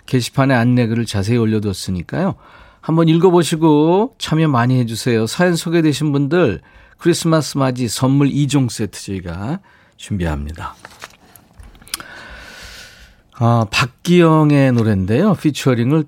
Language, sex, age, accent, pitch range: Korean, male, 40-59, native, 105-145 Hz